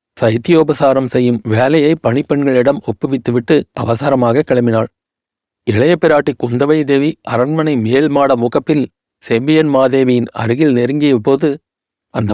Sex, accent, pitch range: male, native, 120-145 Hz